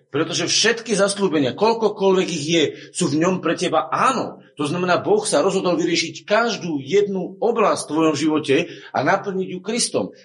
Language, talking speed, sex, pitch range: Slovak, 165 wpm, male, 130-175 Hz